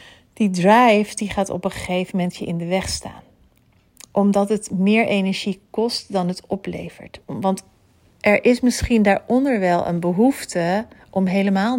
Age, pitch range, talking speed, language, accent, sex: 40-59, 180-205 Hz, 160 wpm, Dutch, Dutch, female